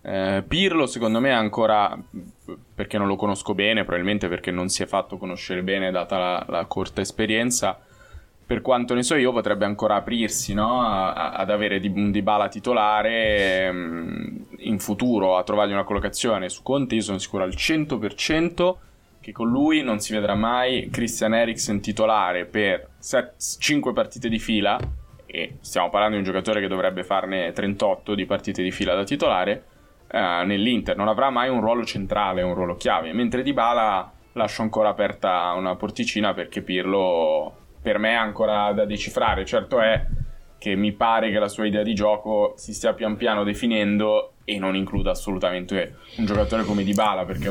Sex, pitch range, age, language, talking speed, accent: male, 95-110 Hz, 20-39, Italian, 175 wpm, native